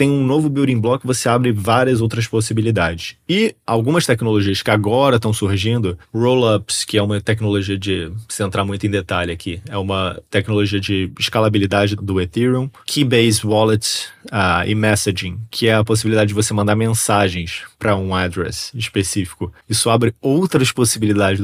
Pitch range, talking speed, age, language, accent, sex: 100-125 Hz, 160 wpm, 20-39, Portuguese, Brazilian, male